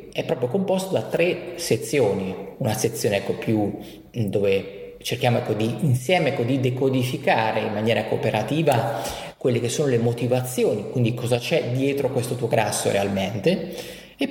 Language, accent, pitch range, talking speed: Italian, native, 110-140 Hz, 145 wpm